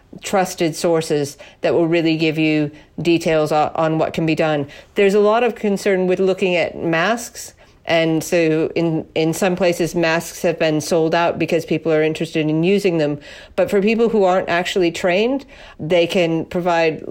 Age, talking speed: 50-69, 175 wpm